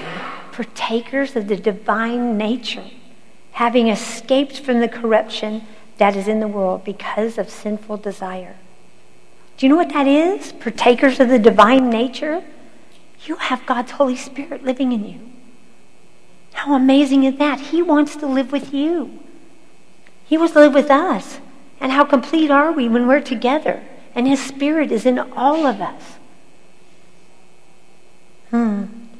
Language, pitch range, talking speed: English, 205-260 Hz, 145 wpm